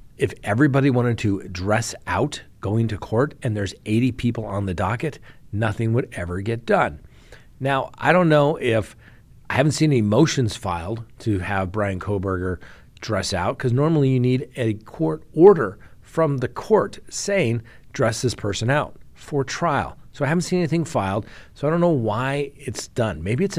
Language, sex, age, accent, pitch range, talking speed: English, male, 40-59, American, 105-140 Hz, 180 wpm